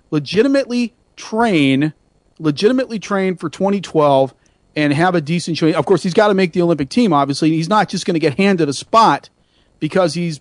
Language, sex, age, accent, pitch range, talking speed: English, male, 40-59, American, 145-195 Hz, 185 wpm